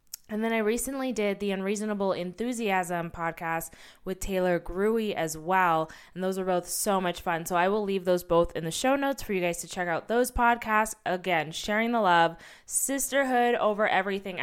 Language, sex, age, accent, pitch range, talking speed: English, female, 20-39, American, 170-225 Hz, 190 wpm